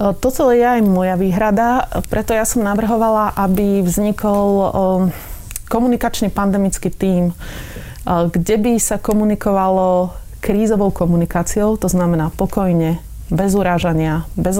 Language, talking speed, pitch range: Slovak, 105 wpm, 175-200 Hz